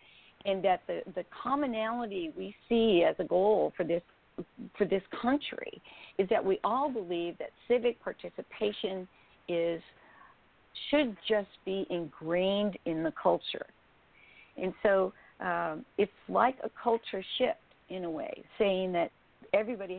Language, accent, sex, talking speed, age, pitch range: English, American, female, 135 wpm, 50-69, 180-230 Hz